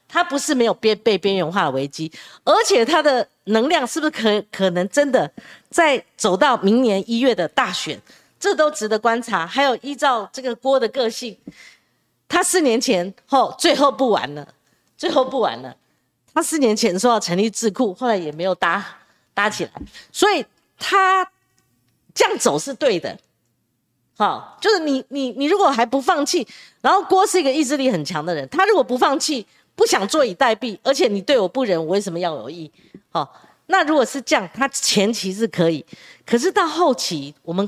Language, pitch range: Chinese, 210-340 Hz